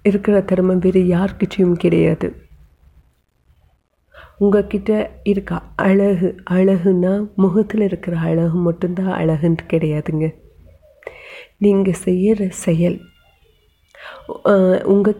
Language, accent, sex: Tamil, native, female